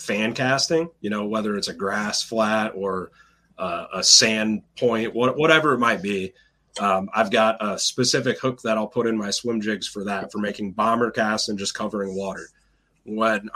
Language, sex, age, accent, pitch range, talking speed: English, male, 30-49, American, 100-115 Hz, 185 wpm